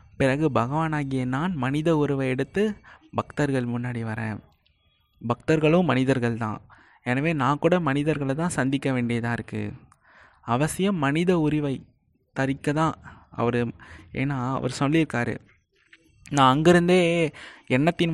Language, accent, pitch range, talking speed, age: Tamil, native, 120-155 Hz, 105 wpm, 20-39